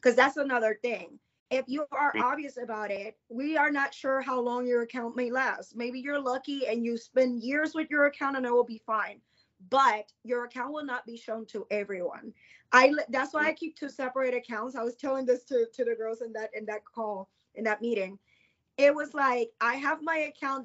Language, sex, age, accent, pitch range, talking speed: English, female, 20-39, American, 225-270 Hz, 220 wpm